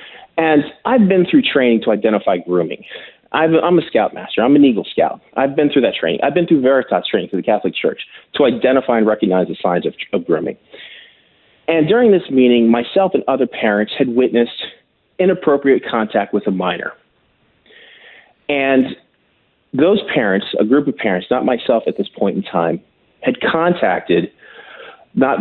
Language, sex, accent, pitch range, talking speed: English, male, American, 115-165 Hz, 170 wpm